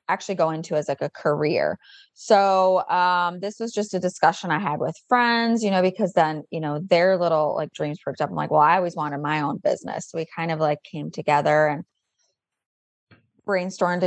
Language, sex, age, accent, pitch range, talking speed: English, female, 20-39, American, 160-200 Hz, 205 wpm